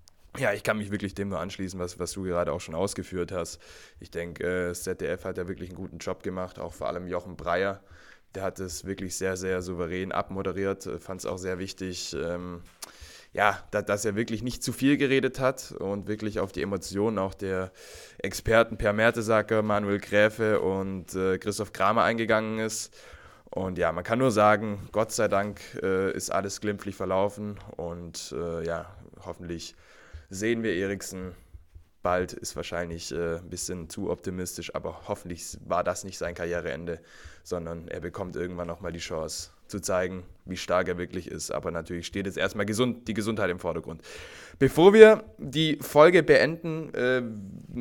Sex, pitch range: male, 90-115 Hz